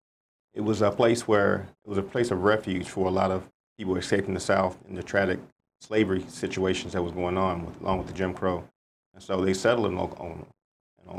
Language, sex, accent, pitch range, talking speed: English, male, American, 90-100 Hz, 220 wpm